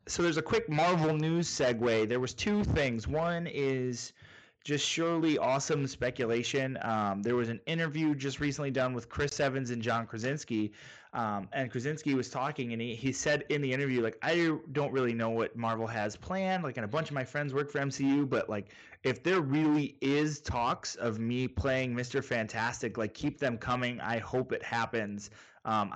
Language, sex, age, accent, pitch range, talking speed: English, male, 30-49, American, 115-145 Hz, 190 wpm